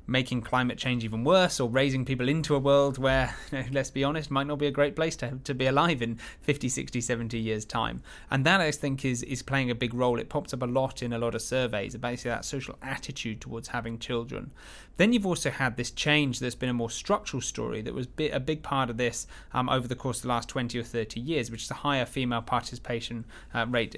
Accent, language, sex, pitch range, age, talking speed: British, English, male, 120-140 Hz, 20-39, 245 wpm